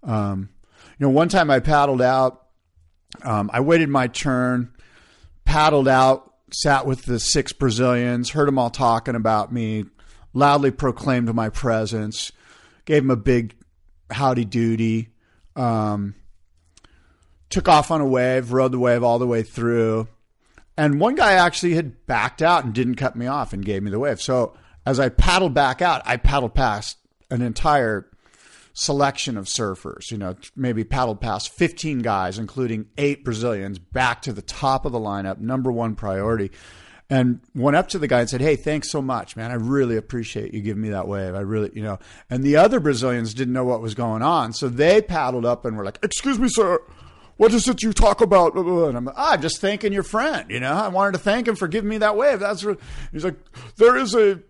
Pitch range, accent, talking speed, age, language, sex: 110-145 Hz, American, 195 wpm, 40-59, English, male